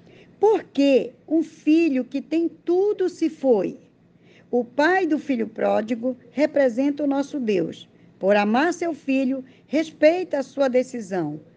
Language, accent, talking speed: Portuguese, Brazilian, 135 wpm